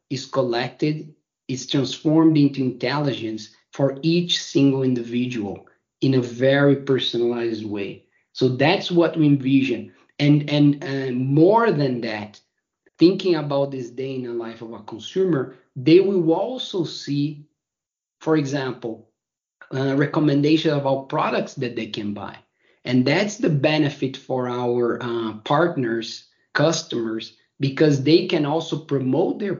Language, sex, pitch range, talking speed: English, male, 125-155 Hz, 135 wpm